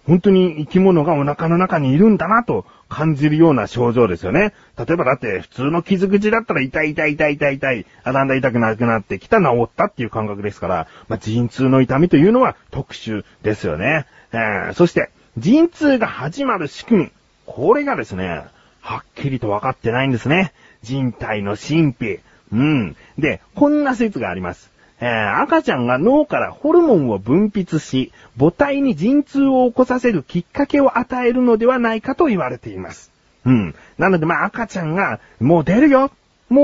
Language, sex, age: Japanese, male, 40-59